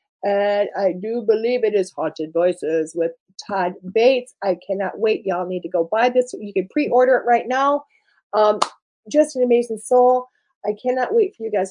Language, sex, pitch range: English, female, 195-270 Hz